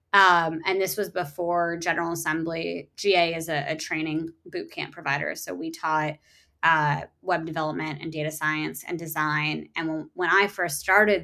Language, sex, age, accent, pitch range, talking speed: English, female, 20-39, American, 160-185 Hz, 170 wpm